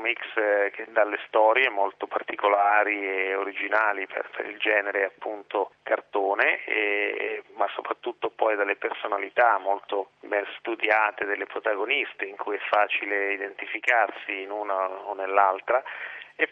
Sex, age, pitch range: male, 30-49, 100-110 Hz